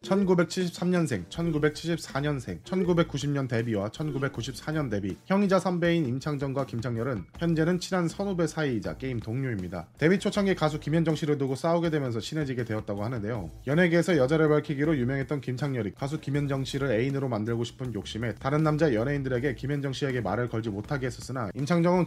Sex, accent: male, native